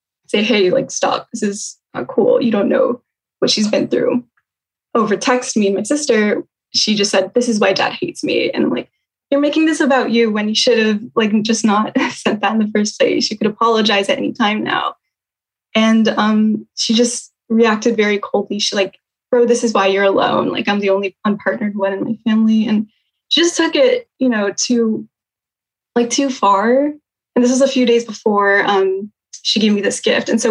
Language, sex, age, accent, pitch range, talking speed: English, female, 10-29, American, 210-250 Hz, 210 wpm